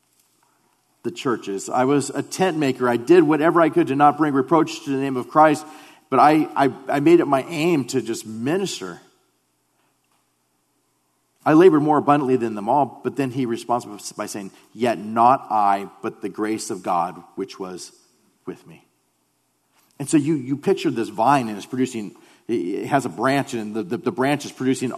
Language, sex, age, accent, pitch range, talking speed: English, male, 40-59, American, 105-155 Hz, 185 wpm